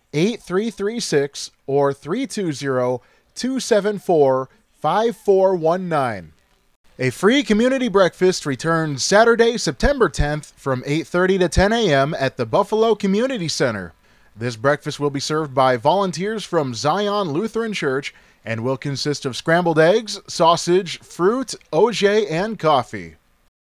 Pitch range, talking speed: 140-200 Hz, 110 wpm